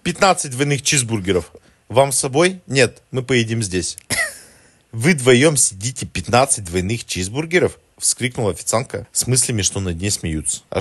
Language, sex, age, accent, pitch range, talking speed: Russian, male, 40-59, native, 100-145 Hz, 140 wpm